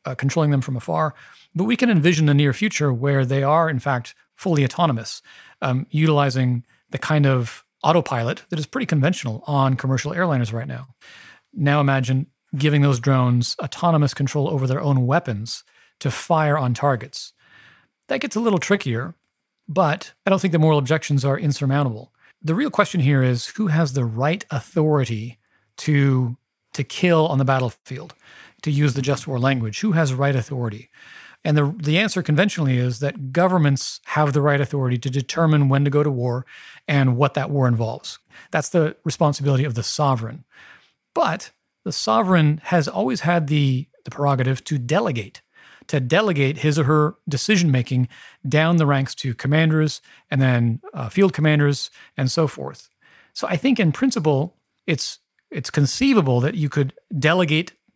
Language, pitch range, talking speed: English, 130-160 Hz, 165 wpm